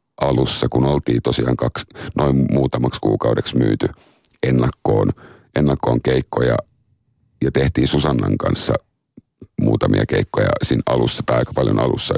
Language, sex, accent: Finnish, male, native